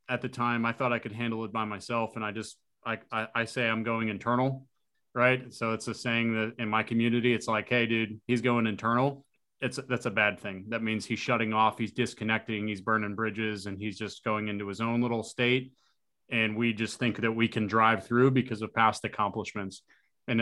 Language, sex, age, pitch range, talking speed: English, male, 30-49, 110-130 Hz, 220 wpm